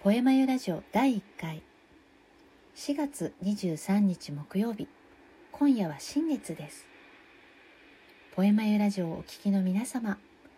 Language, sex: Japanese, female